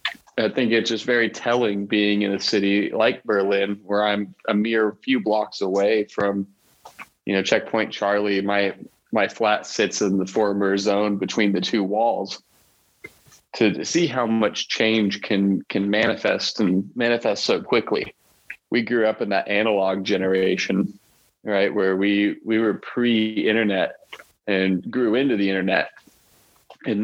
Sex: male